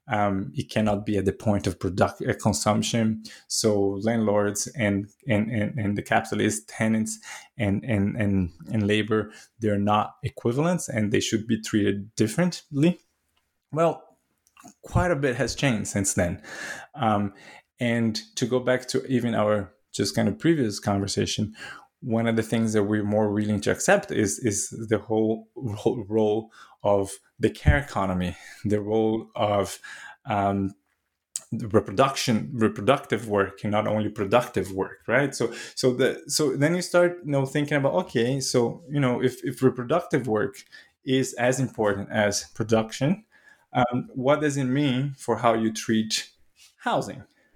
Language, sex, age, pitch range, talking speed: English, male, 20-39, 105-125 Hz, 155 wpm